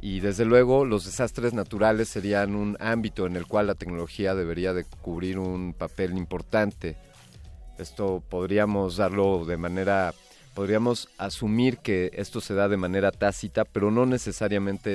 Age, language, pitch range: 40-59, Spanish, 95-110 Hz